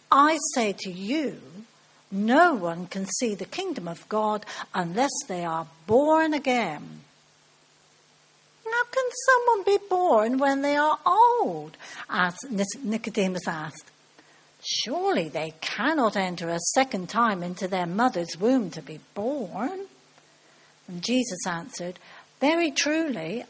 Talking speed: 120 wpm